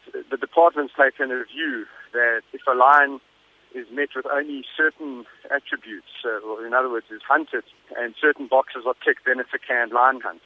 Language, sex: English, male